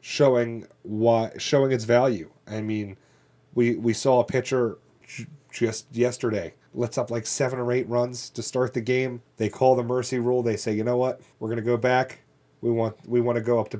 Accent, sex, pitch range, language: American, male, 105-130 Hz, English